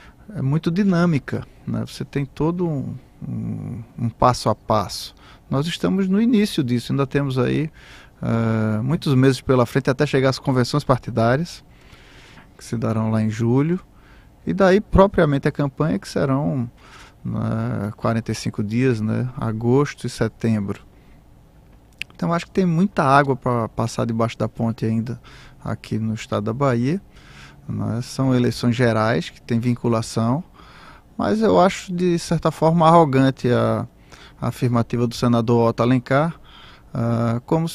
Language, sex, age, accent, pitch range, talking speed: Portuguese, male, 20-39, Brazilian, 115-150 Hz, 140 wpm